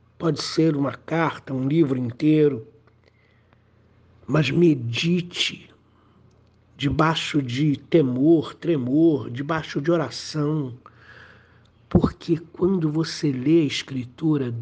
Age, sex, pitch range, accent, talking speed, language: 60-79, male, 115-145 Hz, Brazilian, 90 wpm, Portuguese